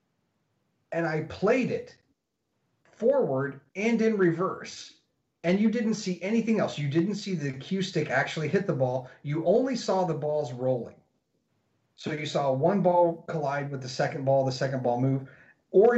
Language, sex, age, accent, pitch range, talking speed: English, male, 30-49, American, 130-170 Hz, 170 wpm